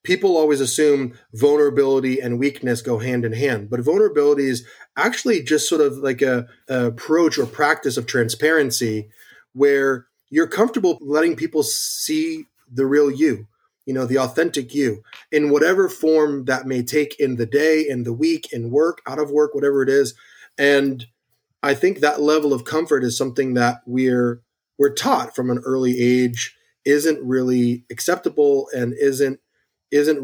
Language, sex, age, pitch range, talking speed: English, male, 30-49, 120-150 Hz, 165 wpm